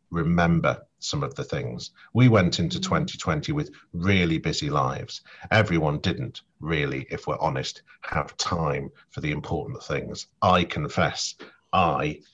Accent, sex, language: British, male, English